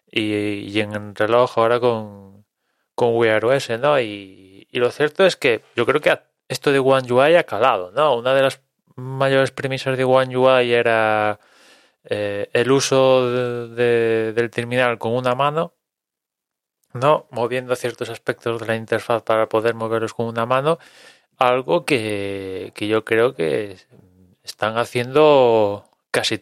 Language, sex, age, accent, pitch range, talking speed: Spanish, male, 20-39, Spanish, 105-130 Hz, 150 wpm